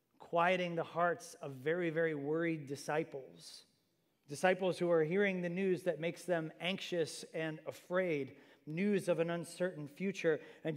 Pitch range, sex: 140-175 Hz, male